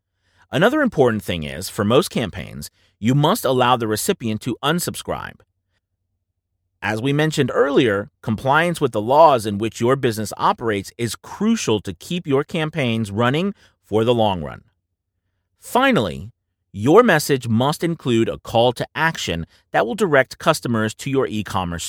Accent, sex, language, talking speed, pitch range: American, male, English, 150 wpm, 95-140 Hz